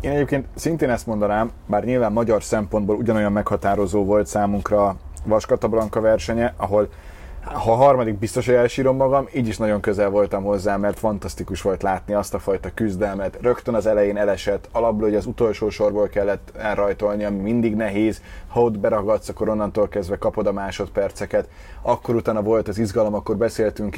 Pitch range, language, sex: 100-115 Hz, Hungarian, male